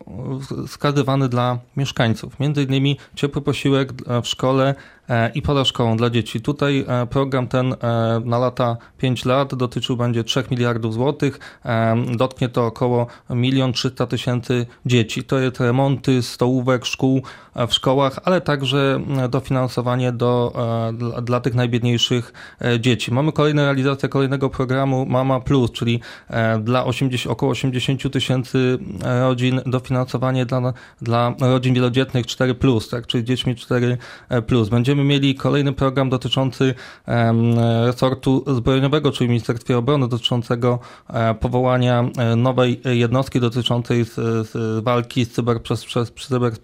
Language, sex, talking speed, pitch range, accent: Polish, male, 125 wpm, 120-135 Hz, native